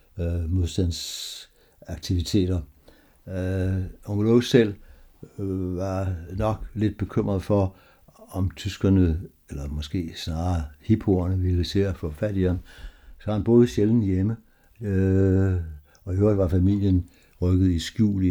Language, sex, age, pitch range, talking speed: Danish, male, 60-79, 85-100 Hz, 130 wpm